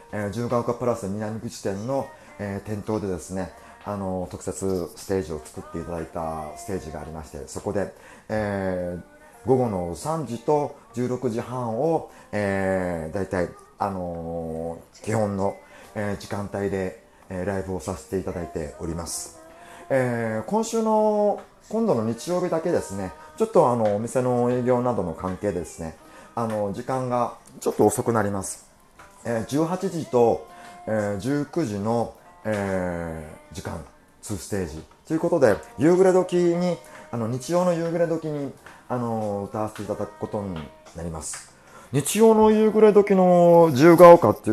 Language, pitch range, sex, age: Japanese, 95-155 Hz, male, 30-49